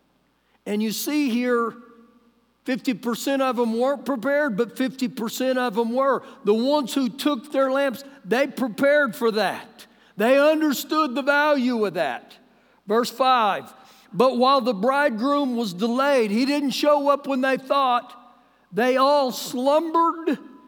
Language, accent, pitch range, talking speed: English, American, 235-275 Hz, 140 wpm